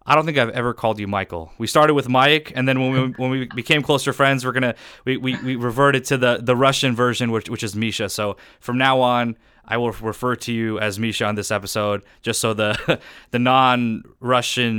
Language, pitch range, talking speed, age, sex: English, 105-125 Hz, 225 wpm, 20-39, male